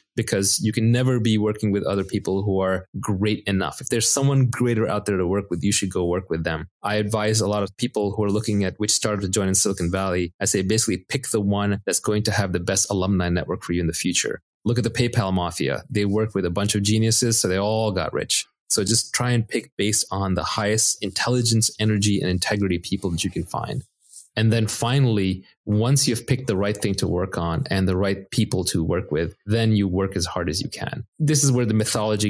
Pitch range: 95-115 Hz